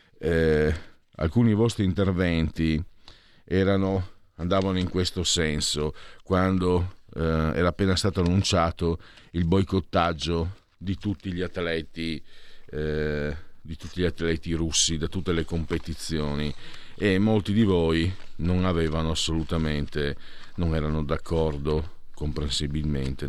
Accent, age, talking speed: native, 50-69, 105 wpm